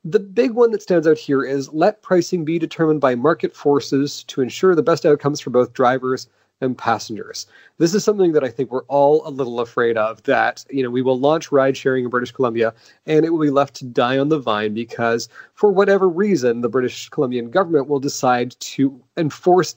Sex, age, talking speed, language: male, 30-49, 215 wpm, English